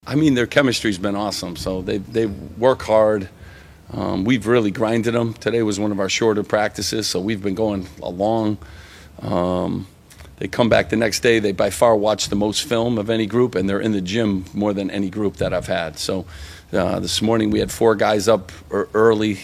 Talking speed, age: 210 wpm, 40-59